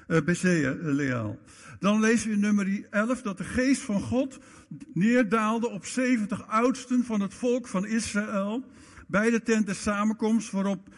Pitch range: 155-220 Hz